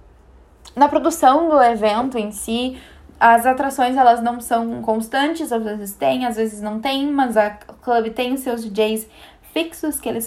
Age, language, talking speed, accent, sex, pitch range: 10-29, Portuguese, 170 wpm, Brazilian, female, 220-285 Hz